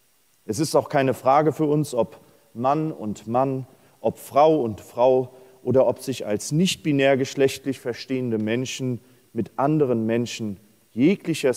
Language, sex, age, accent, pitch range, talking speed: German, male, 40-59, German, 120-155 Hz, 145 wpm